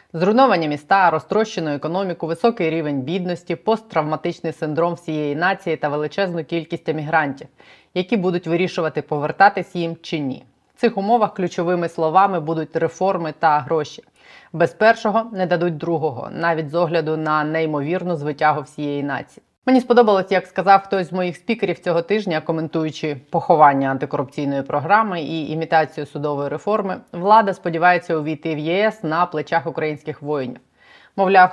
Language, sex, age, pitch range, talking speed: Ukrainian, female, 20-39, 150-180 Hz, 135 wpm